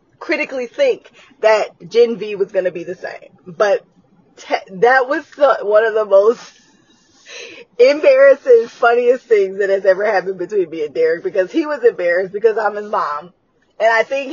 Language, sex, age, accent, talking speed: English, female, 20-39, American, 170 wpm